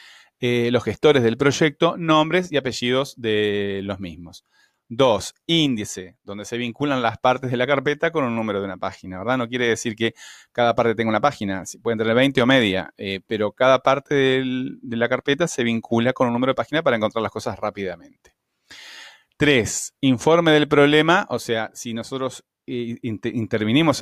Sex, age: male, 30-49